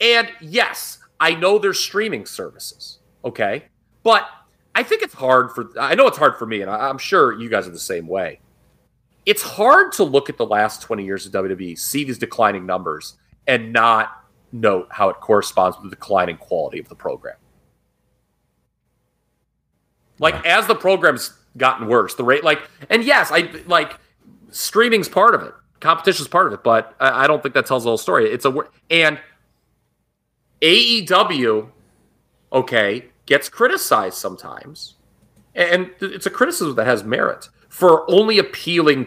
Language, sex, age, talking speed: English, male, 30-49, 165 wpm